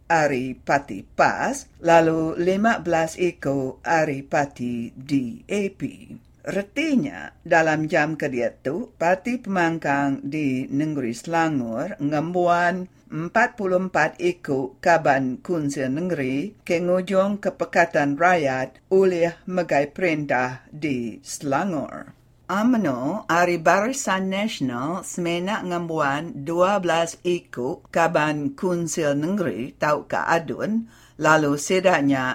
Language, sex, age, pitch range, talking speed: English, female, 60-79, 140-185 Hz, 90 wpm